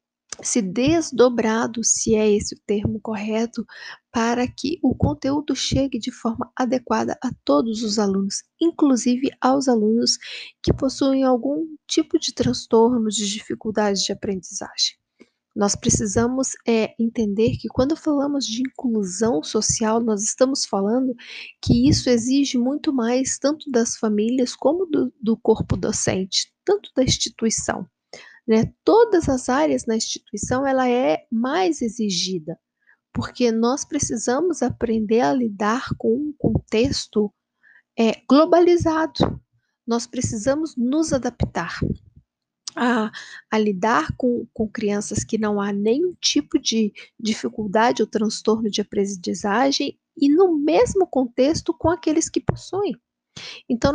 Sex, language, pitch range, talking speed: female, Portuguese, 220-285 Hz, 125 wpm